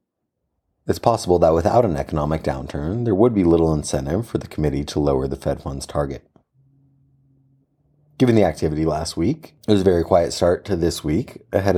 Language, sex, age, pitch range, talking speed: English, male, 30-49, 75-95 Hz, 185 wpm